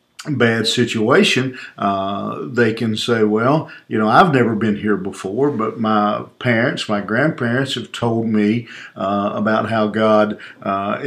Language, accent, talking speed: English, American, 145 wpm